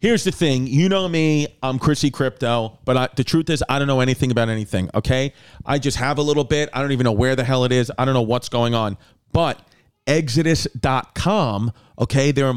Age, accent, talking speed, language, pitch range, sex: 40-59, American, 215 wpm, English, 125-150 Hz, male